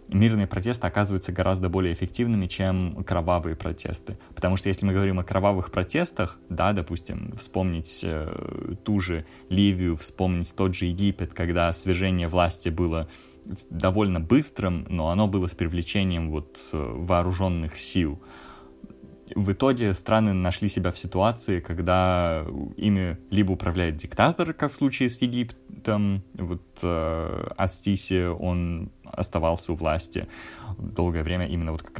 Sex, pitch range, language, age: male, 85-95 Hz, Russian, 20-39